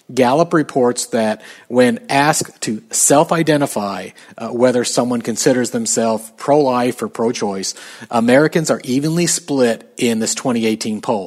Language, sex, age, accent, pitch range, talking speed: English, male, 40-59, American, 110-140 Hz, 115 wpm